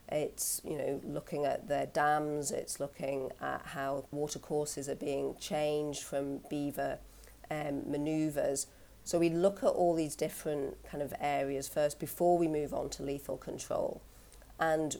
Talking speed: 155 wpm